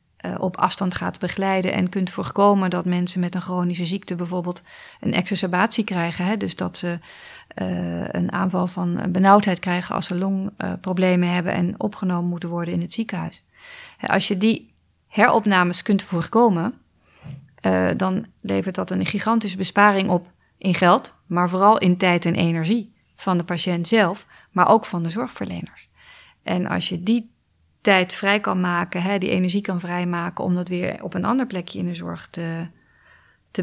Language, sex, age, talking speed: Dutch, female, 30-49, 170 wpm